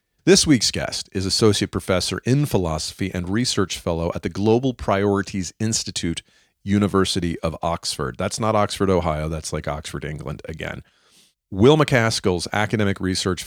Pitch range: 90-110 Hz